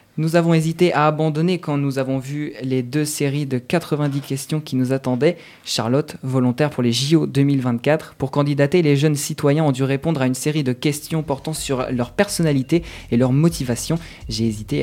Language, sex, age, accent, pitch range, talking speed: French, male, 20-39, French, 125-155 Hz, 185 wpm